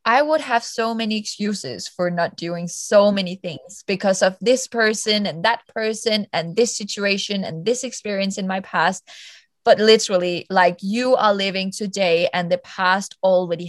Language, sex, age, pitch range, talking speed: English, female, 20-39, 180-220 Hz, 170 wpm